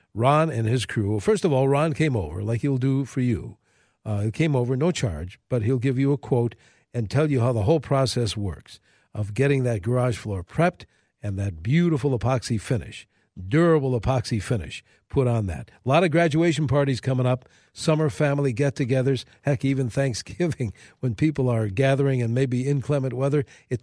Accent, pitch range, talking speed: American, 110-145 Hz, 185 wpm